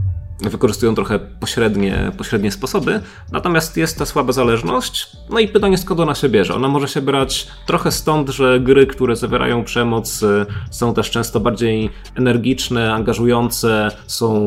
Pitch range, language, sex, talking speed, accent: 105-140 Hz, Polish, male, 145 wpm, native